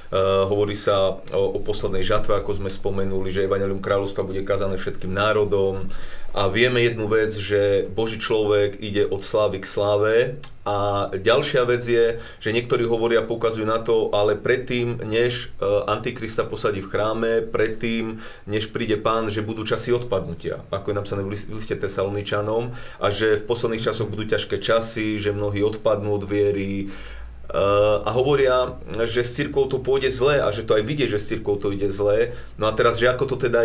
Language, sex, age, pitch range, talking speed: Slovak, male, 30-49, 100-120 Hz, 175 wpm